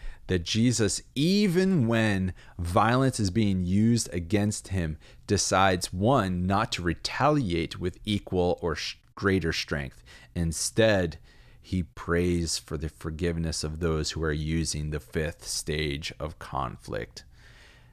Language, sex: English, male